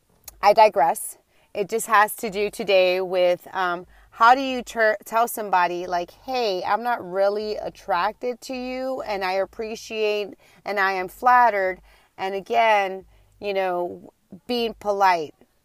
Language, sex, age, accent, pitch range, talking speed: English, female, 30-49, American, 185-220 Hz, 140 wpm